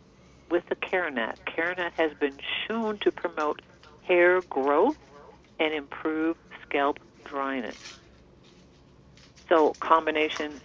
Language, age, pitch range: English, 50-69, 140-170 Hz